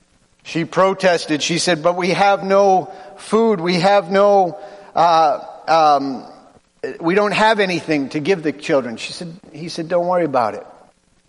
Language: English